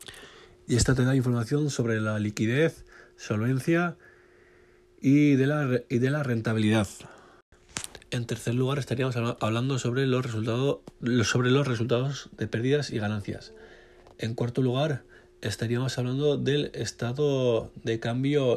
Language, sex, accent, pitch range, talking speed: Spanish, male, Spanish, 110-125 Hz, 125 wpm